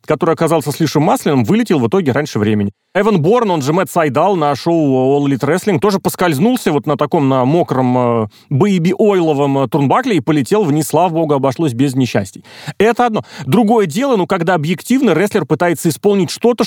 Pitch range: 140-200 Hz